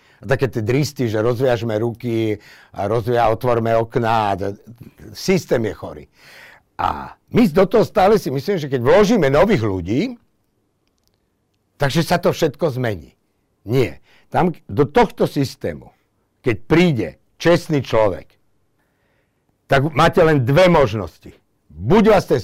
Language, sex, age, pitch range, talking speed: Slovak, male, 60-79, 105-150 Hz, 130 wpm